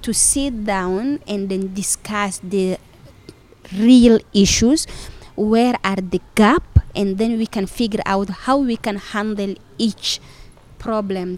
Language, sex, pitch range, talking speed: English, female, 190-230 Hz, 130 wpm